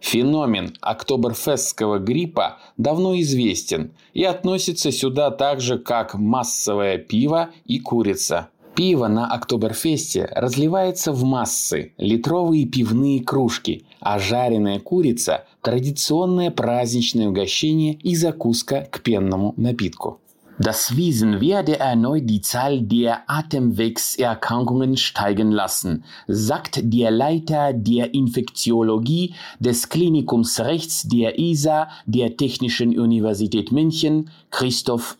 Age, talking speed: 30-49, 100 wpm